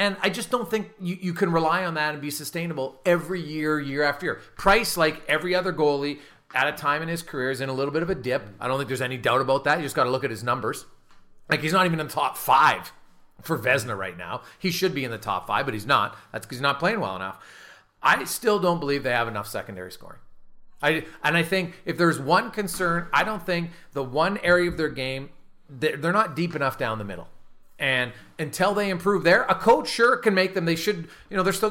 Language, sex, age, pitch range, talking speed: English, male, 40-59, 140-180 Hz, 250 wpm